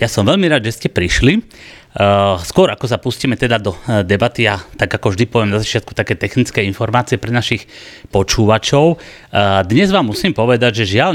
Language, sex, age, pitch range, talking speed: Slovak, male, 30-49, 95-125 Hz, 180 wpm